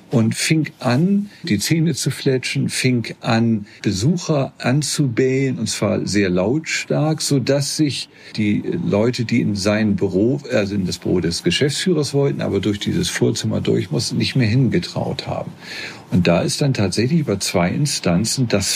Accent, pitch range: German, 105-145 Hz